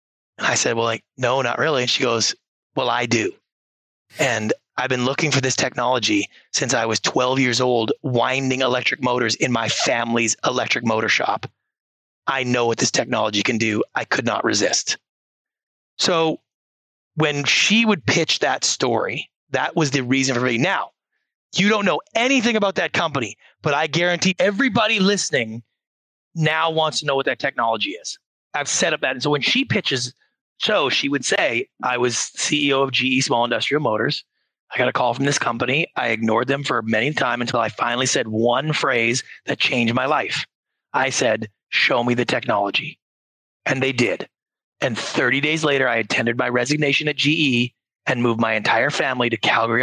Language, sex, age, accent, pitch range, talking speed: English, male, 30-49, American, 120-155 Hz, 180 wpm